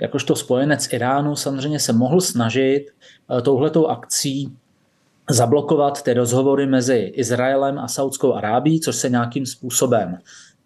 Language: Slovak